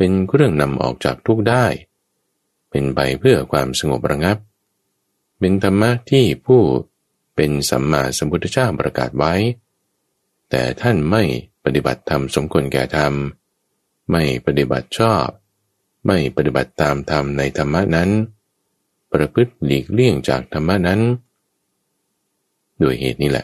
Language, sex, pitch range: Thai, male, 65-95 Hz